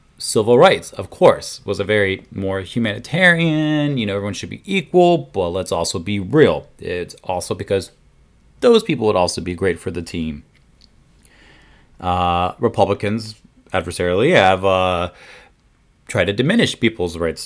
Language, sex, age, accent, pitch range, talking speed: English, male, 30-49, American, 90-110 Hz, 145 wpm